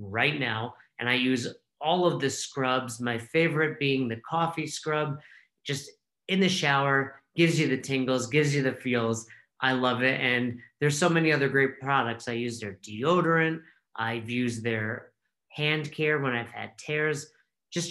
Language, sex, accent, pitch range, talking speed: English, male, American, 125-150 Hz, 170 wpm